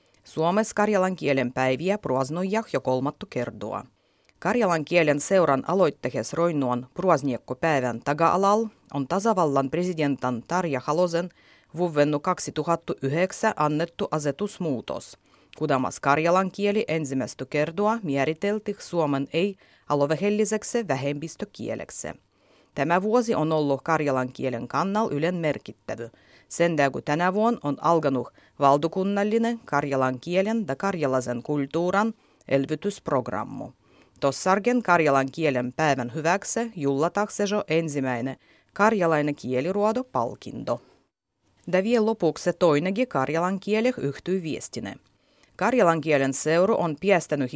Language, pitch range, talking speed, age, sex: Finnish, 140-200 Hz, 100 wpm, 30-49, female